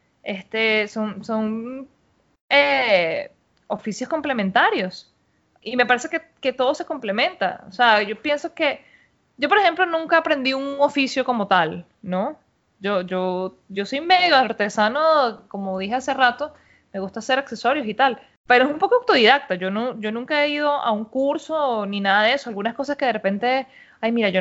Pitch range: 200-265 Hz